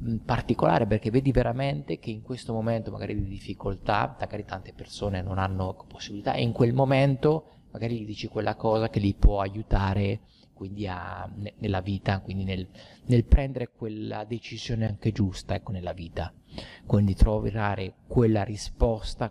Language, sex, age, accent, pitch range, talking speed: Italian, male, 30-49, native, 100-115 Hz, 150 wpm